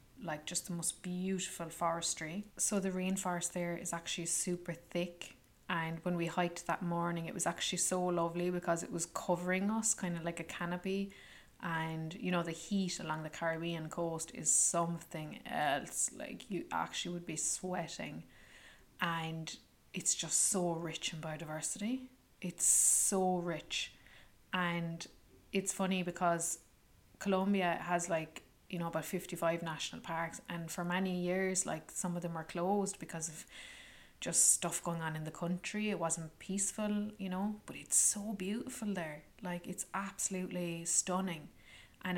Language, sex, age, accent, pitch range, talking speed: English, female, 20-39, Irish, 170-190 Hz, 155 wpm